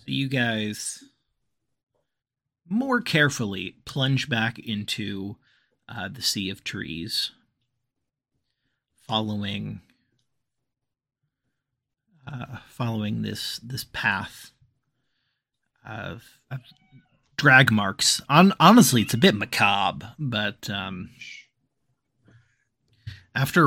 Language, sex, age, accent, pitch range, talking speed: English, male, 30-49, American, 110-130 Hz, 80 wpm